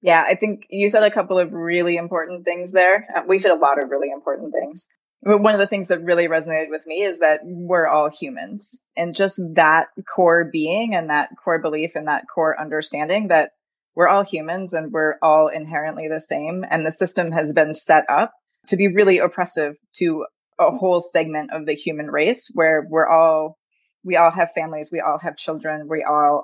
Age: 20-39